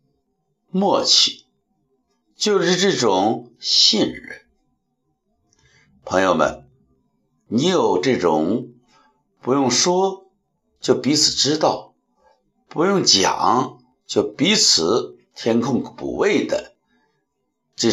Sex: male